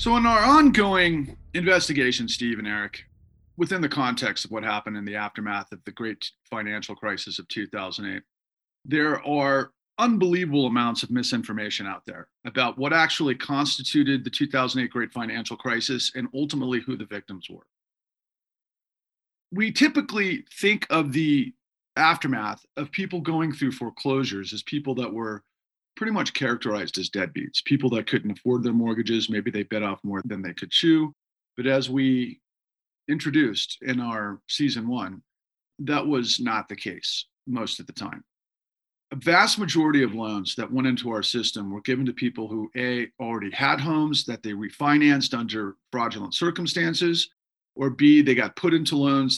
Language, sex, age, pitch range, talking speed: English, male, 40-59, 110-145 Hz, 160 wpm